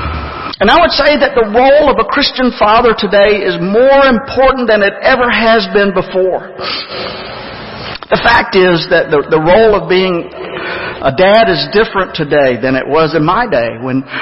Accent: American